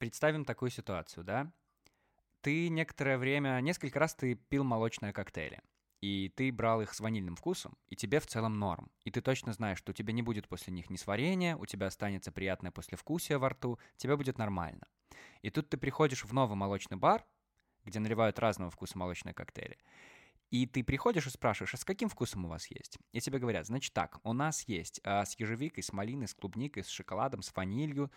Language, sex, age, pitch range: Russian, male, 20-39, 100-145 Hz